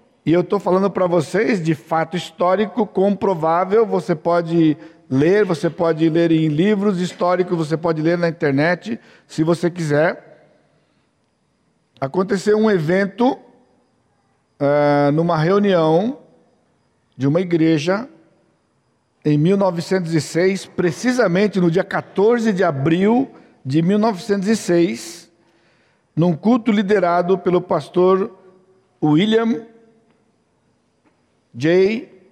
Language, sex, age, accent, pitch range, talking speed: Portuguese, male, 60-79, Brazilian, 160-200 Hz, 100 wpm